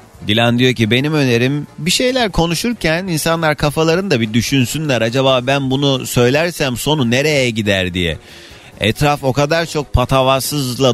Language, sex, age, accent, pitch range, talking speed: Turkish, male, 30-49, native, 105-140 Hz, 135 wpm